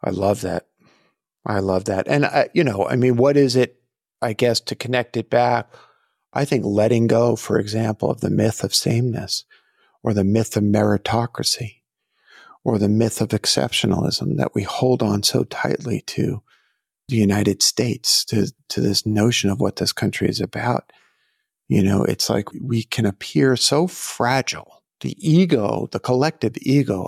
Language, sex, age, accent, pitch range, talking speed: English, male, 50-69, American, 105-130 Hz, 170 wpm